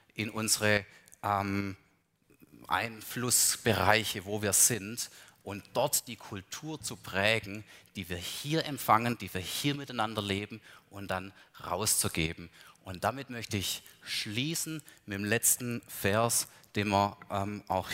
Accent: German